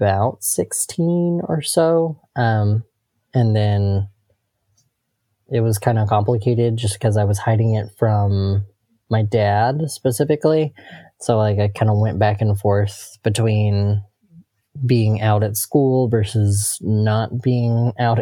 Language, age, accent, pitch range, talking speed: English, 20-39, American, 105-125 Hz, 130 wpm